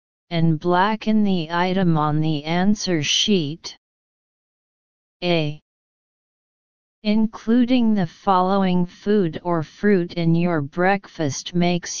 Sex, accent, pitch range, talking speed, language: female, American, 160-190 Hz, 95 wpm, English